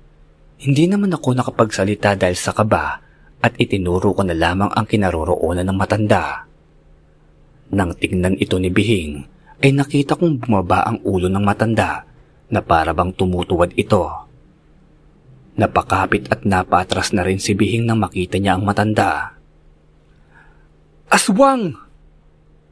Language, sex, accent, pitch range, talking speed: Filipino, male, native, 75-115 Hz, 125 wpm